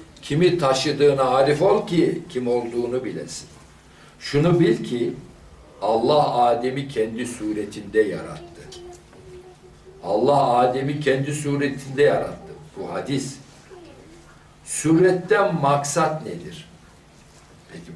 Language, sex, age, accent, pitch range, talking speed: Turkish, male, 60-79, native, 130-175 Hz, 90 wpm